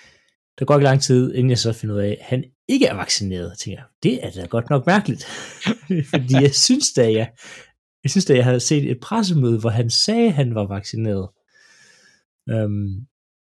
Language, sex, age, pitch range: Danish, male, 30-49, 105-135 Hz